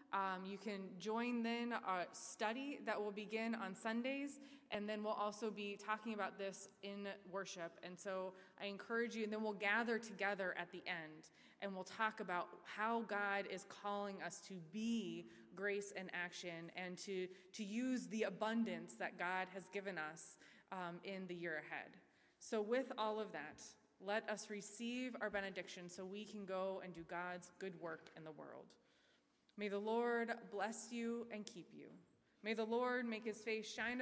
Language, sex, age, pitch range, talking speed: English, female, 20-39, 185-220 Hz, 180 wpm